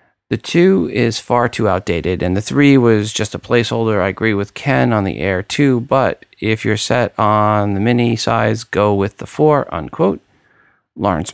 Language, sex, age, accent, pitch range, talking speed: English, male, 50-69, American, 95-120 Hz, 185 wpm